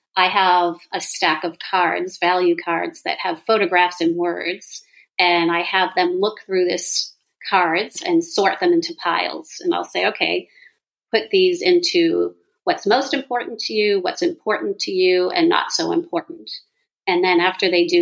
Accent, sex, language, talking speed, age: American, female, English, 170 wpm, 40-59